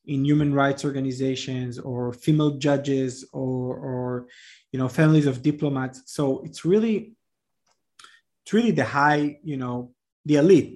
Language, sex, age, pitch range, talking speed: English, male, 20-39, 130-155 Hz, 140 wpm